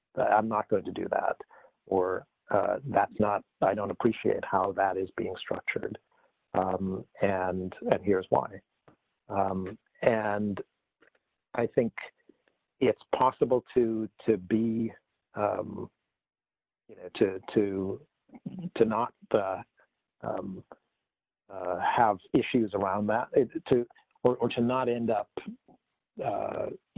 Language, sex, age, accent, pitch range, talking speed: English, male, 50-69, American, 100-125 Hz, 120 wpm